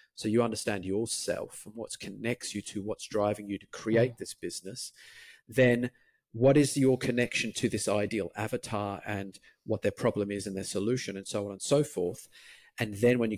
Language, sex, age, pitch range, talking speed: English, male, 40-59, 105-125 Hz, 195 wpm